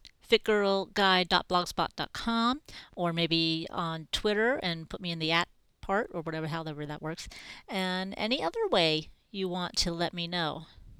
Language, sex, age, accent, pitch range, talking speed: English, female, 40-59, American, 170-210 Hz, 145 wpm